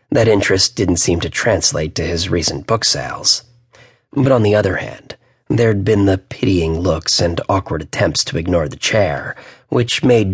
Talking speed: 175 wpm